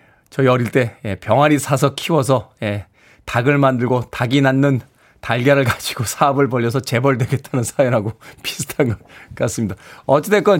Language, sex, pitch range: Korean, male, 125-180 Hz